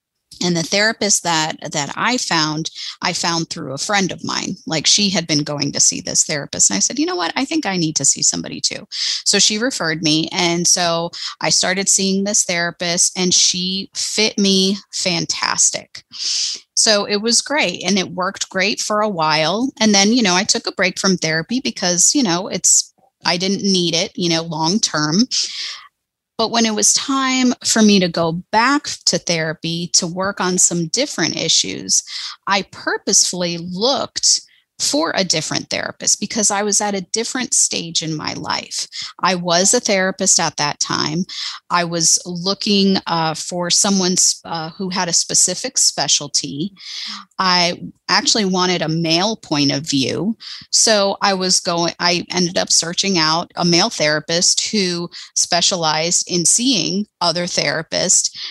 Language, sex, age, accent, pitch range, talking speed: English, female, 30-49, American, 170-210 Hz, 170 wpm